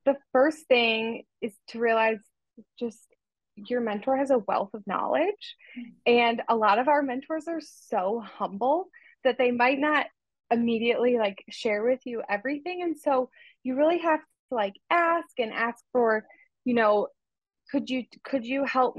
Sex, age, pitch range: female, 20-39, 215-270 Hz